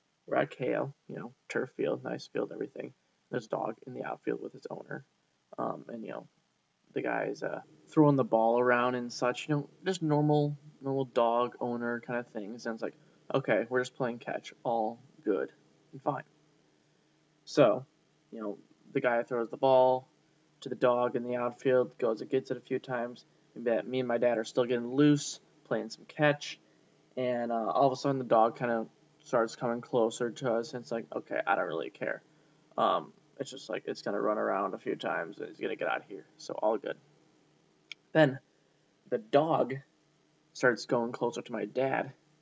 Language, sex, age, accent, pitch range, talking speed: English, male, 20-39, American, 120-150 Hz, 190 wpm